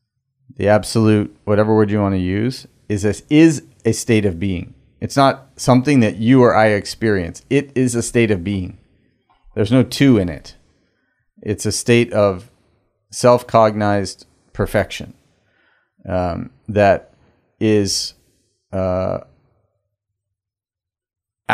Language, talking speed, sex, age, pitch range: English, 125 wpm, male, 30-49, 95-115 Hz